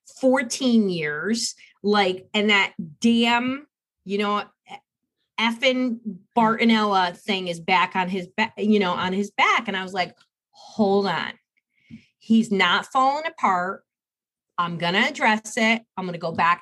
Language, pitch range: English, 185-230 Hz